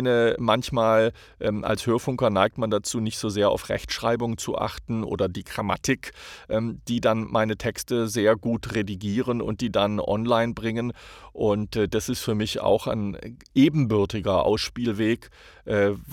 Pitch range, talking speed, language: 100-115 Hz, 155 wpm, German